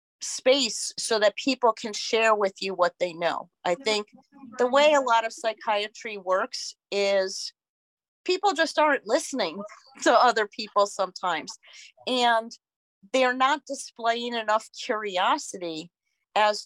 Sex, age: female, 40-59